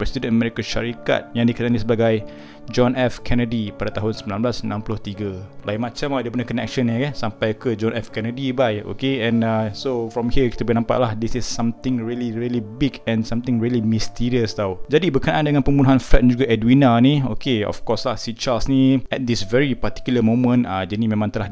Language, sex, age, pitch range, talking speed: Malay, male, 20-39, 110-130 Hz, 200 wpm